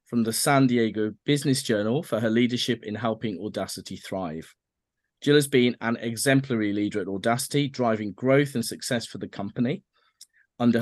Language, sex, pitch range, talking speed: English, male, 110-125 Hz, 160 wpm